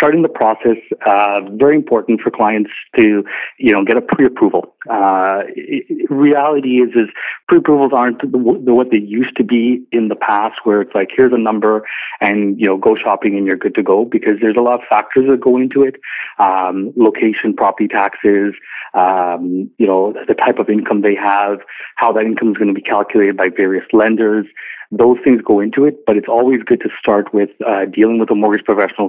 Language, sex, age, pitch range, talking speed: English, male, 40-59, 100-125 Hz, 205 wpm